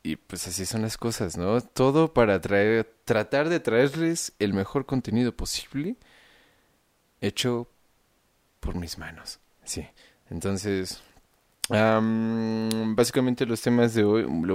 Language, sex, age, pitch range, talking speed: Spanish, male, 20-39, 95-120 Hz, 125 wpm